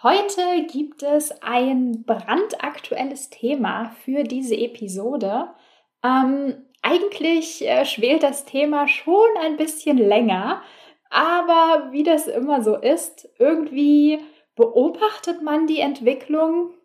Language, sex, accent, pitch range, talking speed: German, female, German, 225-320 Hz, 105 wpm